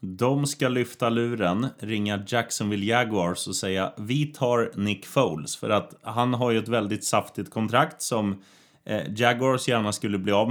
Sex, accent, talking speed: male, native, 160 wpm